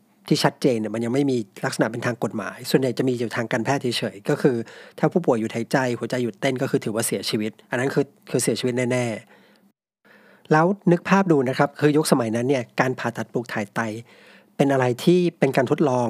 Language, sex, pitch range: Thai, male, 120-155 Hz